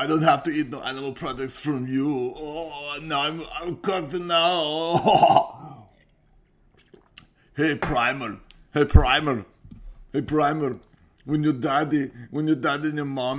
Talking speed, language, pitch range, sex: 145 wpm, English, 120-155 Hz, male